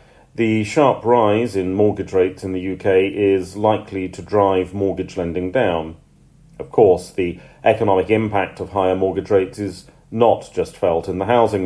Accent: British